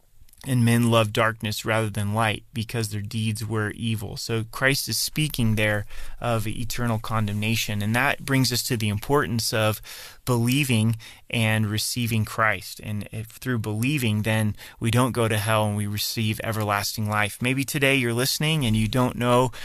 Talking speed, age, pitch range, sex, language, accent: 170 wpm, 30-49, 110-125 Hz, male, English, American